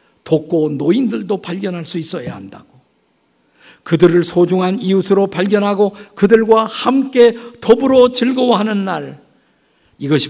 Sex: male